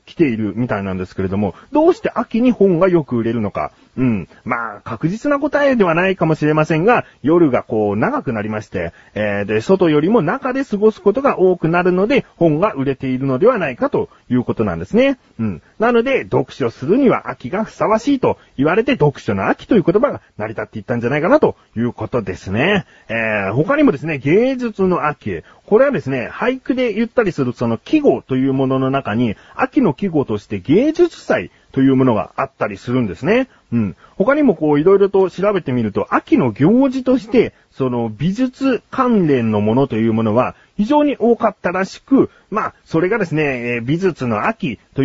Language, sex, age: Japanese, male, 40-59